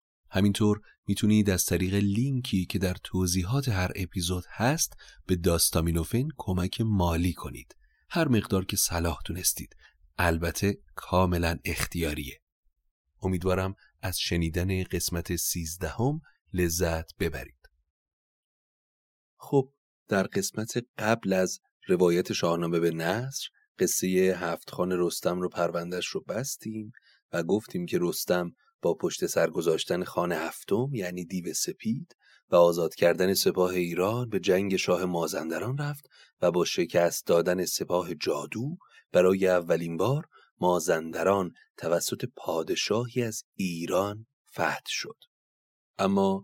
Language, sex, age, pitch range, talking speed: Persian, male, 30-49, 85-110 Hz, 115 wpm